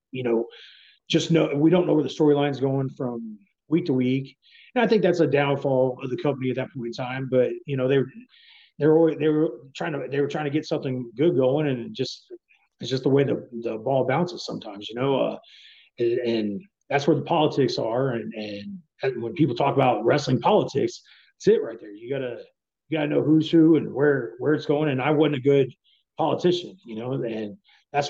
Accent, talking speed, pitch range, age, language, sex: American, 220 wpm, 125-160 Hz, 30-49, English, male